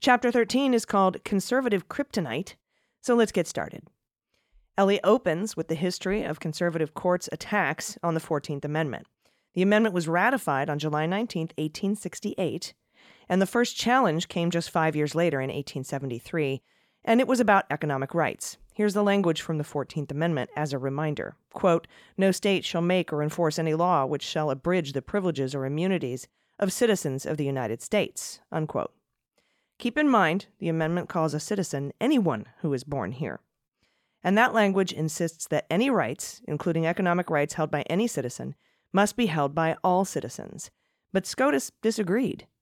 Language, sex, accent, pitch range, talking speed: English, female, American, 150-200 Hz, 165 wpm